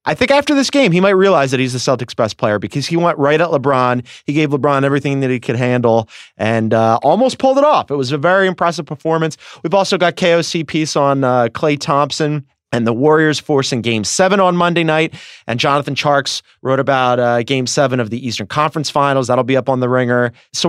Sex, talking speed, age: male, 225 wpm, 30-49